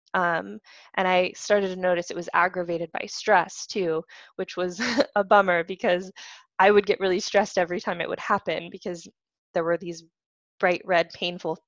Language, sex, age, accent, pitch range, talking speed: English, female, 10-29, American, 175-205 Hz, 175 wpm